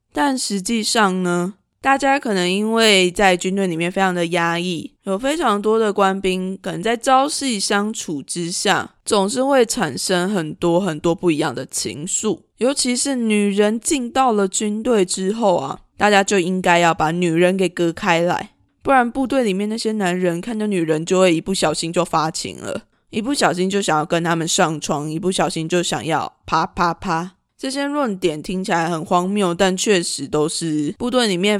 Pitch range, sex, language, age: 170-215 Hz, female, Chinese, 20-39